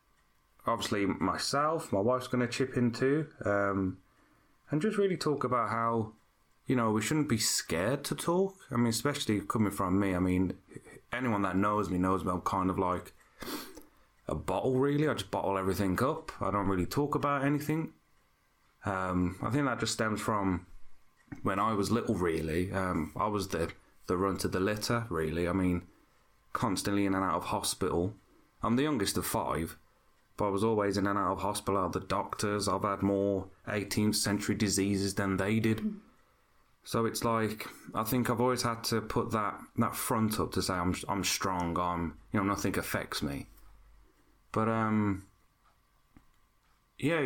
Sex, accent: male, British